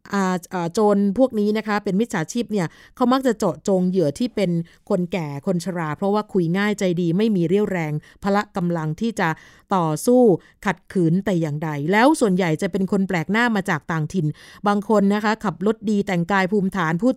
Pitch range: 180-220 Hz